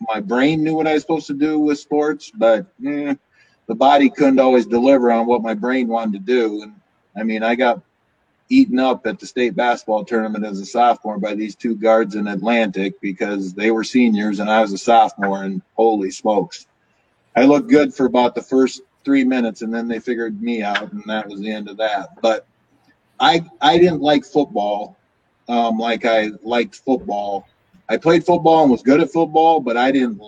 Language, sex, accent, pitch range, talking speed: English, male, American, 110-140 Hz, 200 wpm